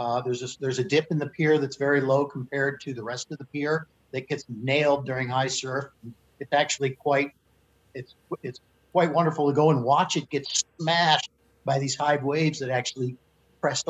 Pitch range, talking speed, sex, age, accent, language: 135-165 Hz, 200 wpm, male, 50-69, American, English